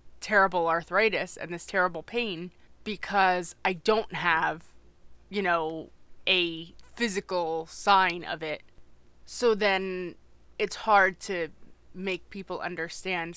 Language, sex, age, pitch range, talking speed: English, female, 20-39, 165-190 Hz, 110 wpm